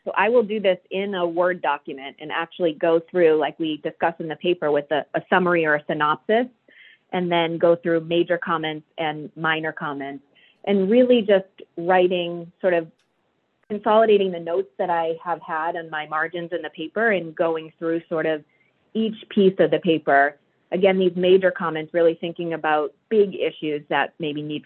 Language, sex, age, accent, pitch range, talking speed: English, female, 30-49, American, 155-190 Hz, 185 wpm